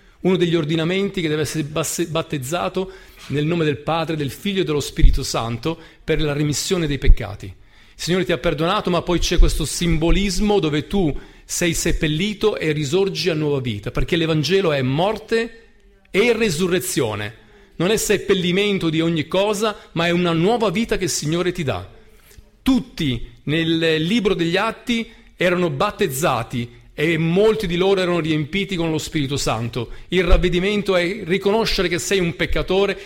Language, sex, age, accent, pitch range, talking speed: Italian, male, 40-59, native, 130-180 Hz, 160 wpm